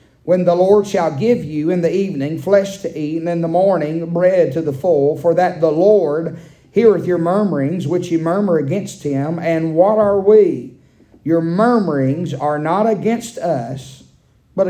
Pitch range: 140-175 Hz